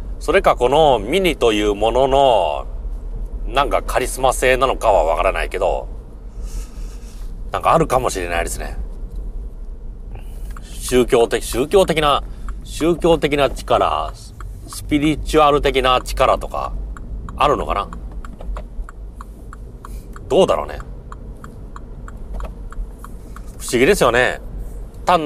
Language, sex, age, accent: Japanese, male, 40-59, native